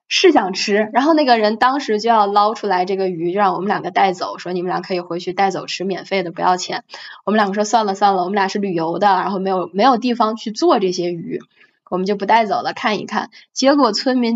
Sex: female